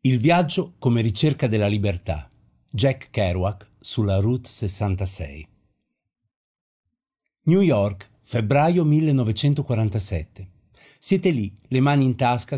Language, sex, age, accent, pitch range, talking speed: Italian, male, 50-69, native, 95-120 Hz, 100 wpm